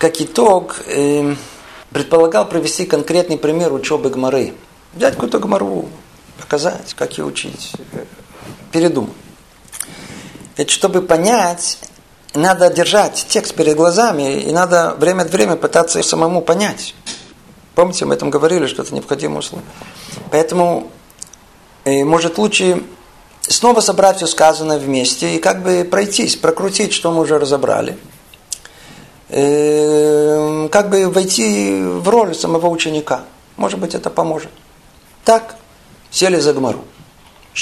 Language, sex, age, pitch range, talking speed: Russian, male, 50-69, 135-180 Hz, 120 wpm